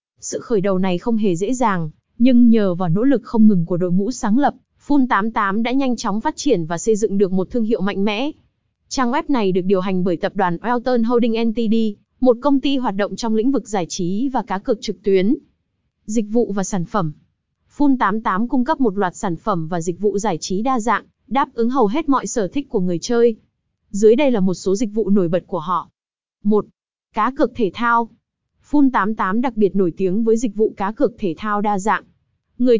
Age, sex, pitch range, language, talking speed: 20-39, female, 195-250 Hz, Vietnamese, 225 wpm